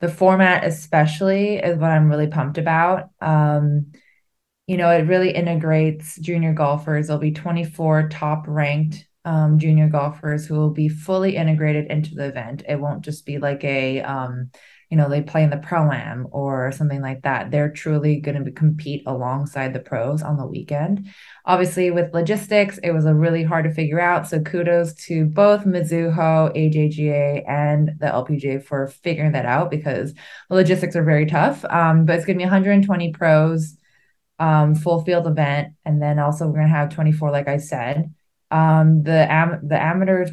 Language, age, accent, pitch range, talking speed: English, 20-39, American, 150-170 Hz, 175 wpm